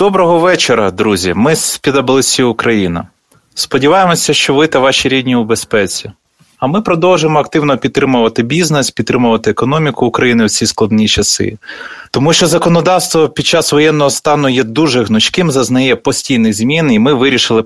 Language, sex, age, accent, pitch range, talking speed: Ukrainian, male, 20-39, native, 115-155 Hz, 150 wpm